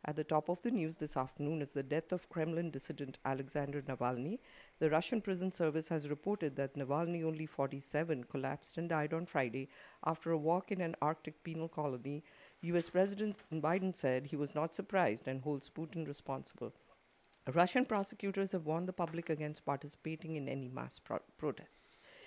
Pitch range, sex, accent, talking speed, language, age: 140-180 Hz, female, Indian, 170 wpm, English, 50-69